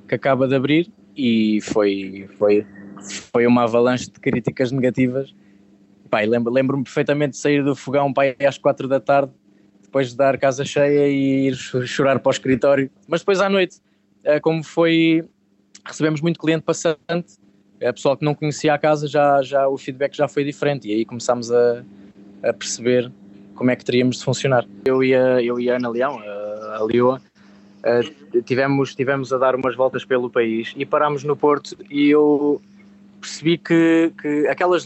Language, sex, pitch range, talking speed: Portuguese, male, 120-150 Hz, 170 wpm